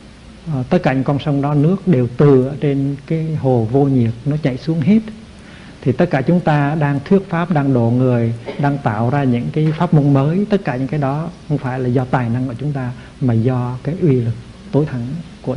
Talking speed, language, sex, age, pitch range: 225 wpm, Vietnamese, male, 60-79, 125-155 Hz